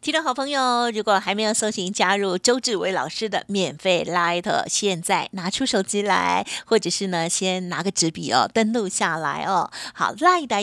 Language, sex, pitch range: Chinese, female, 180-230 Hz